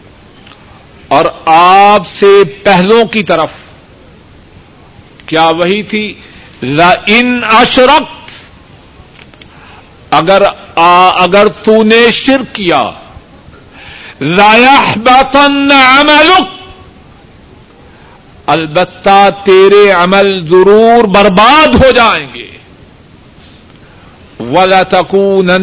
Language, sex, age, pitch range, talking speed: Urdu, male, 50-69, 165-220 Hz, 70 wpm